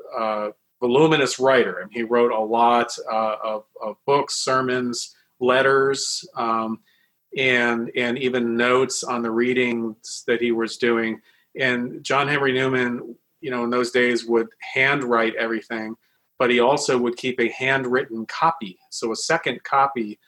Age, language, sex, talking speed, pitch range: 40-59, English, male, 155 wpm, 110-125 Hz